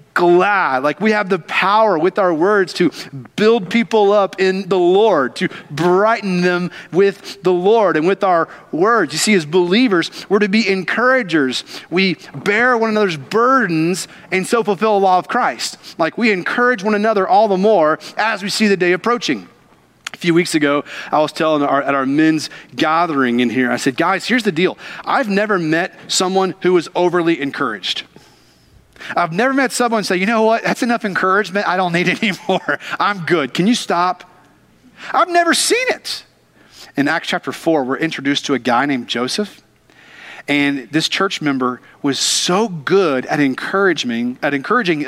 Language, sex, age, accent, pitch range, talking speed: English, male, 30-49, American, 160-220 Hz, 180 wpm